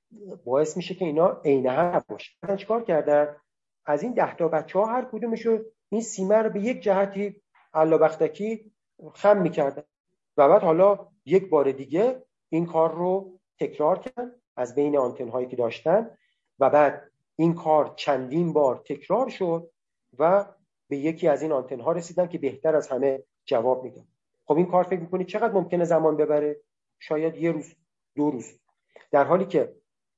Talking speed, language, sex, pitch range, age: 165 wpm, Persian, male, 150-195 Hz, 40-59